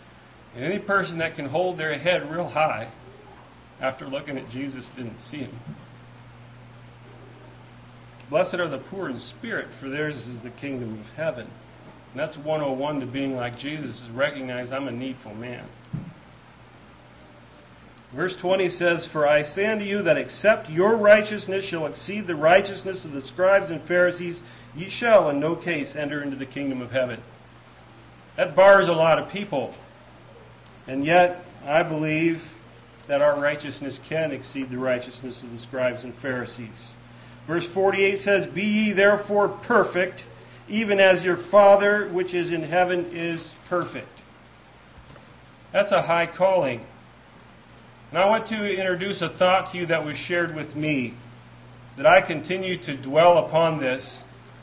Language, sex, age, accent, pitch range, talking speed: English, male, 40-59, American, 125-185 Hz, 155 wpm